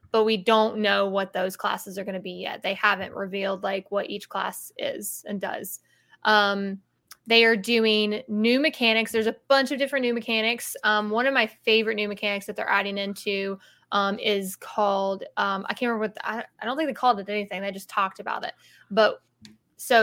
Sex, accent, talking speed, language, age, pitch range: female, American, 210 wpm, English, 20-39, 200-235 Hz